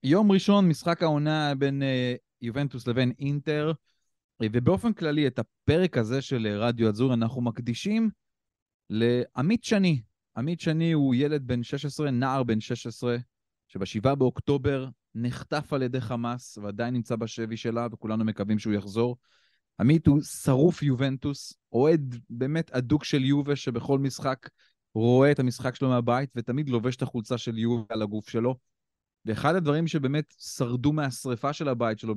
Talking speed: 145 wpm